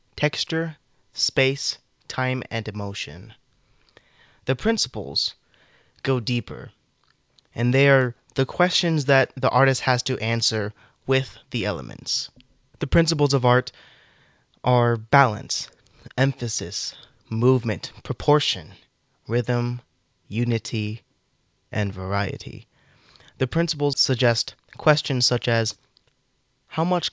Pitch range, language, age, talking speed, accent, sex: 110-135 Hz, English, 20-39, 95 wpm, American, male